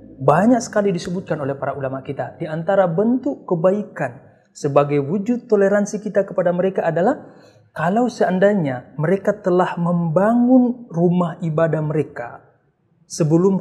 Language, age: Indonesian, 30-49